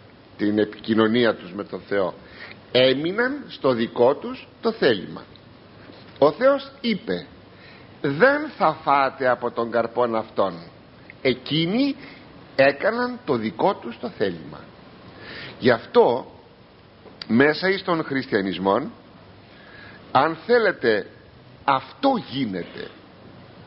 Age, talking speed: 50-69, 95 wpm